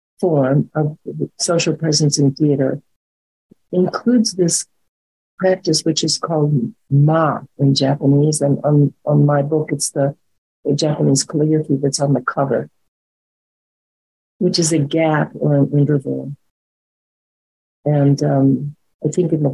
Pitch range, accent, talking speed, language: 135-150 Hz, American, 130 wpm, English